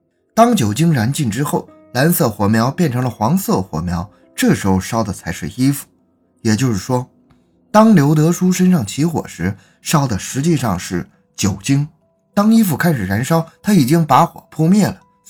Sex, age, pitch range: male, 20-39, 105-170 Hz